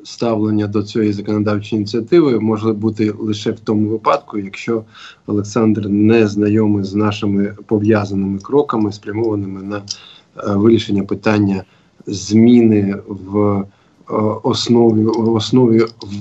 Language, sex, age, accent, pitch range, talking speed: Ukrainian, male, 20-39, native, 105-120 Hz, 105 wpm